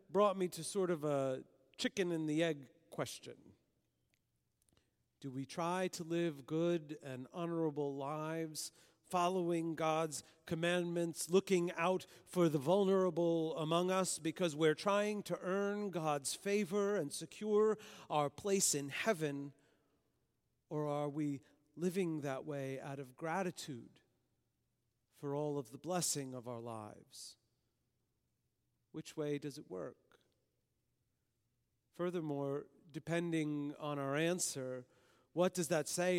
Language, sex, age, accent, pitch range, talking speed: English, male, 40-59, American, 140-175 Hz, 125 wpm